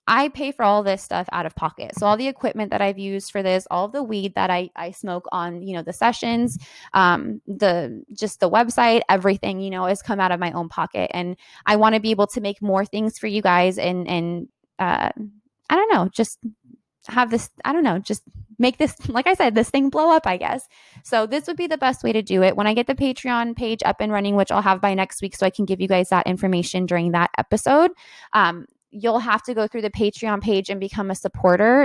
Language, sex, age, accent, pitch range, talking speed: English, female, 20-39, American, 185-225 Hz, 245 wpm